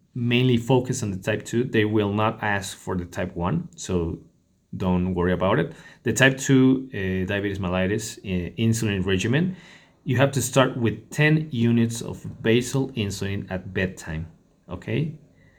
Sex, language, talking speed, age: male, English, 150 wpm, 30-49